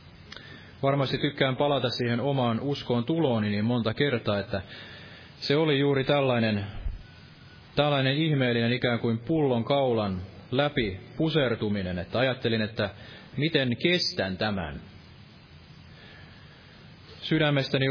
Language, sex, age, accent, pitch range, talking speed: Finnish, male, 30-49, native, 110-145 Hz, 100 wpm